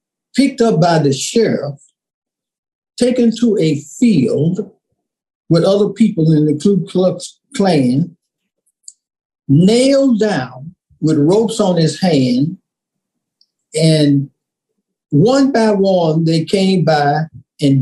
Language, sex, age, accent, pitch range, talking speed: English, male, 50-69, American, 145-210 Hz, 110 wpm